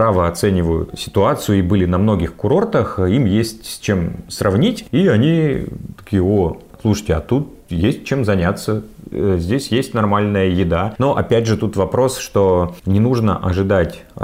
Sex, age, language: male, 30-49, Russian